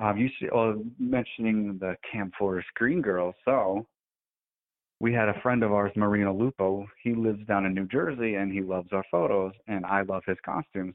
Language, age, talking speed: English, 30-49, 185 wpm